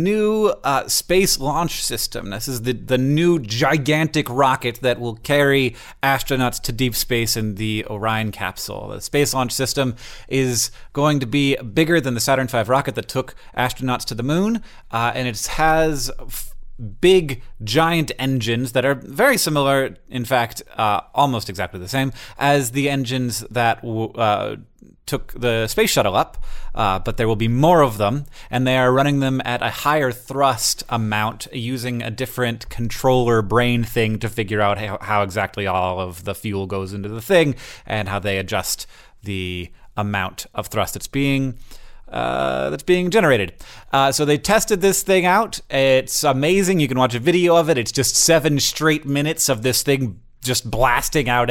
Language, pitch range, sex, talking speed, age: English, 110-140 Hz, male, 175 wpm, 30-49